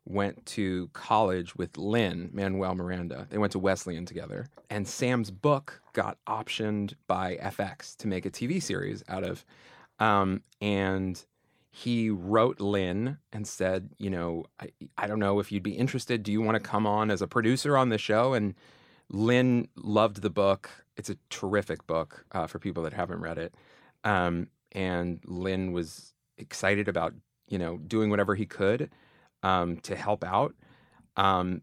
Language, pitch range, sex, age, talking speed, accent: English, 95-110 Hz, male, 30-49, 165 wpm, American